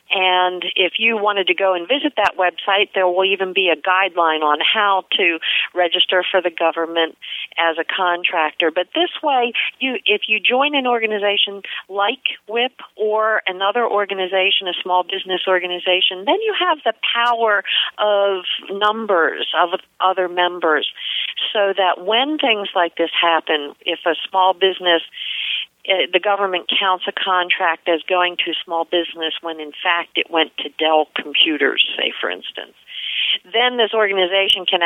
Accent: American